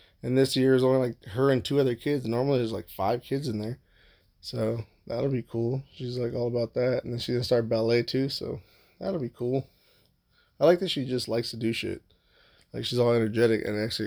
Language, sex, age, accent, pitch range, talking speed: English, male, 20-39, American, 110-125 Hz, 230 wpm